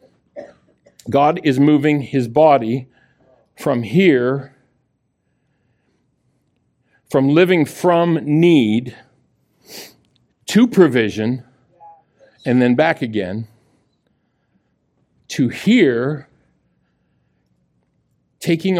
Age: 50-69